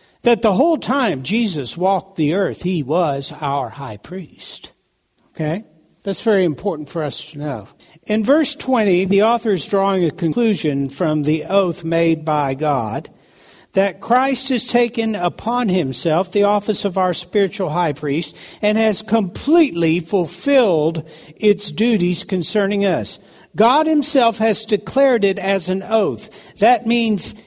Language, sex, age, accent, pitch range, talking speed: English, male, 60-79, American, 180-250 Hz, 145 wpm